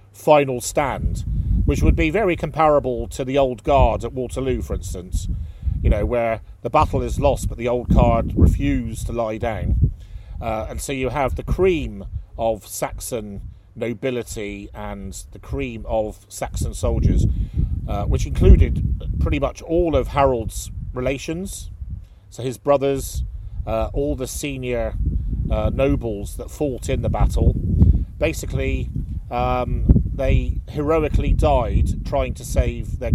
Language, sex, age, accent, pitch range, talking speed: English, male, 40-59, British, 100-130 Hz, 140 wpm